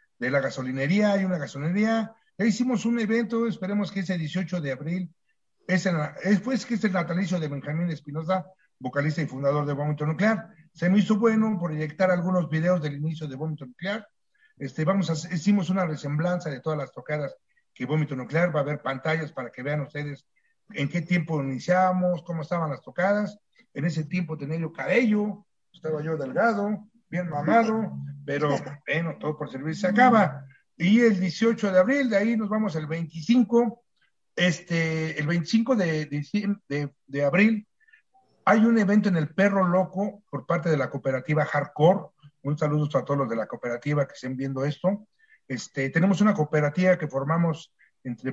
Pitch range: 145-200 Hz